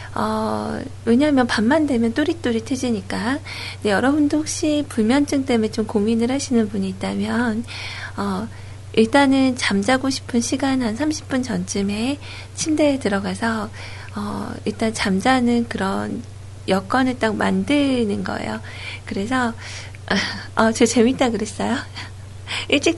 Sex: female